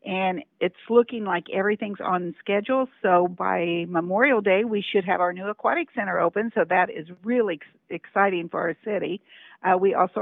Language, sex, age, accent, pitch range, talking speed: English, female, 50-69, American, 175-215 Hz, 175 wpm